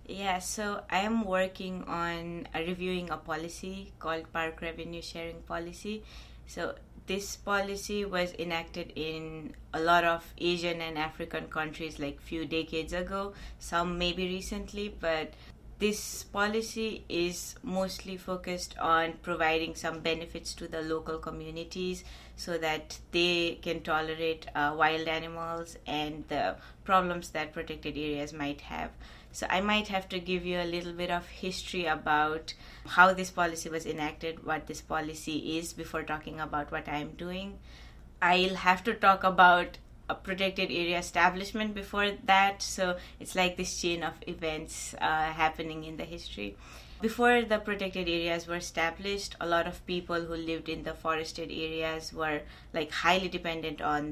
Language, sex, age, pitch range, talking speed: English, female, 20-39, 160-185 Hz, 150 wpm